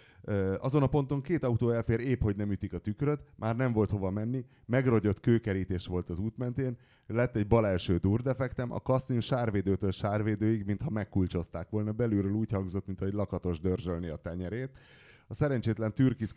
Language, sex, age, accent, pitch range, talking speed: English, male, 30-49, Finnish, 95-120 Hz, 170 wpm